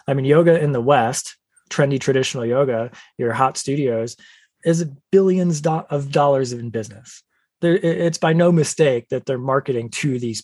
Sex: male